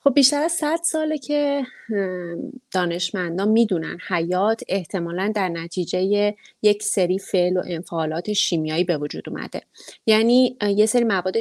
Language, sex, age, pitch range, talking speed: English, female, 30-49, 175-225 Hz, 130 wpm